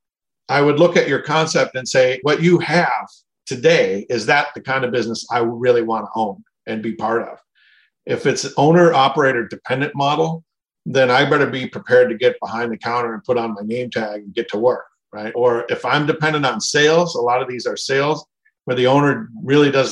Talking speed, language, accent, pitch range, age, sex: 210 wpm, English, American, 125-165 Hz, 50-69, male